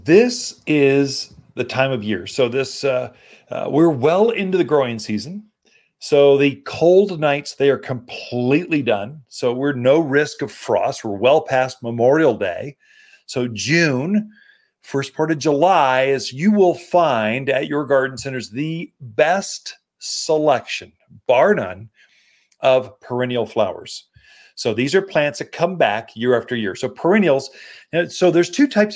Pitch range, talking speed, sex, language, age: 130-185 Hz, 150 wpm, male, English, 40-59